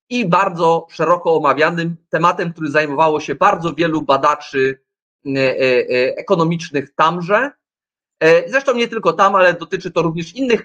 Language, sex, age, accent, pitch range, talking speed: Polish, male, 30-49, native, 145-195 Hz, 125 wpm